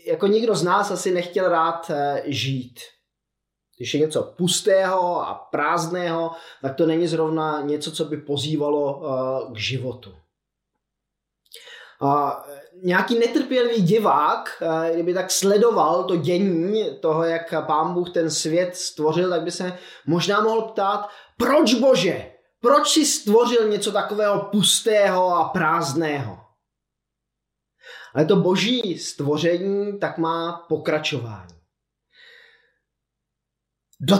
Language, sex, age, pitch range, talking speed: Czech, male, 20-39, 155-205 Hz, 110 wpm